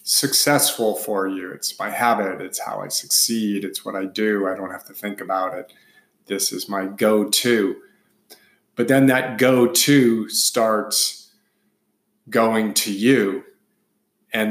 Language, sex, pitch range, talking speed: English, male, 100-125 Hz, 140 wpm